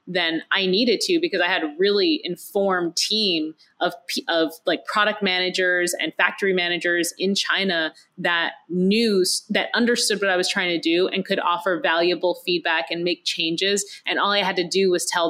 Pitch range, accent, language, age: 175-215 Hz, American, English, 30-49